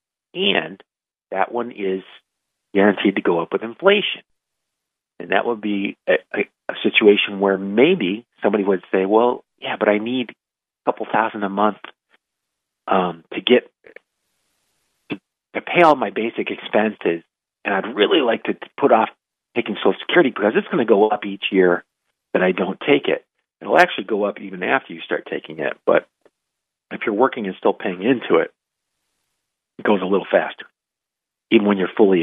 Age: 40-59